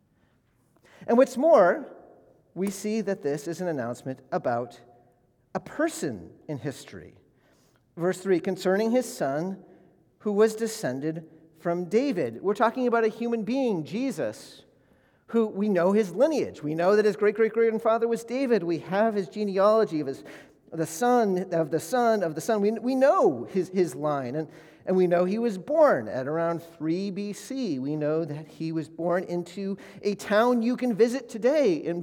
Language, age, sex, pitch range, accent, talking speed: English, 40-59, male, 165-230 Hz, American, 165 wpm